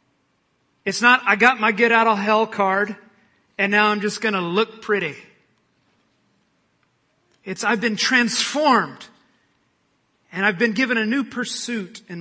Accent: American